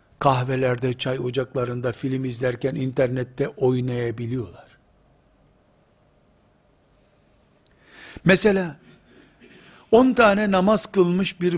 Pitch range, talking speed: 130-185 Hz, 65 wpm